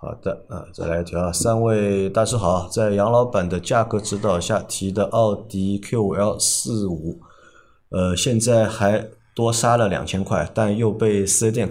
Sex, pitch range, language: male, 95-115 Hz, Chinese